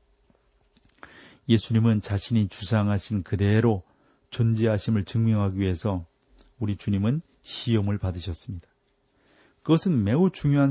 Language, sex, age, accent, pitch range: Korean, male, 40-59, native, 110-140 Hz